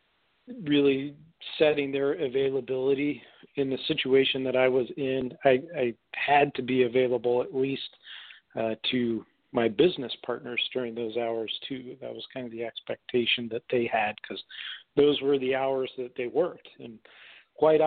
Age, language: 40-59, English